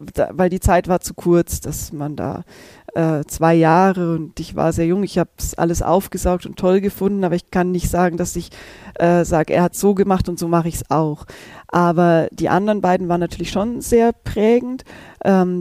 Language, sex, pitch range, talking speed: German, female, 175-215 Hz, 215 wpm